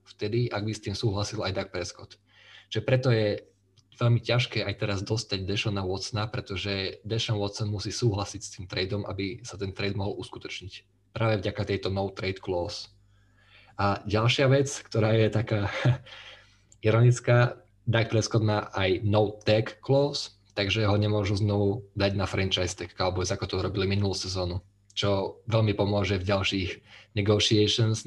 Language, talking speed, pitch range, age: Slovak, 160 wpm, 100-115 Hz, 20-39